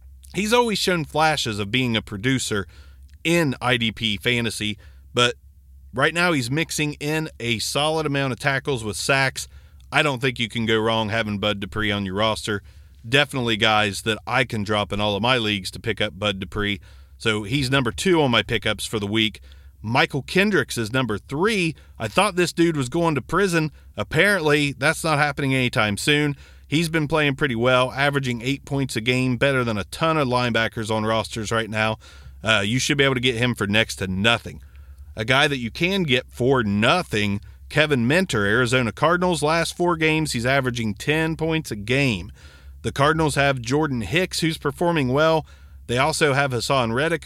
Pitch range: 105-150 Hz